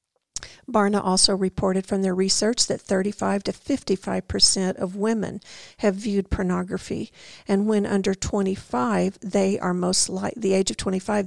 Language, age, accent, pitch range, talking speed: English, 50-69, American, 190-215 Hz, 145 wpm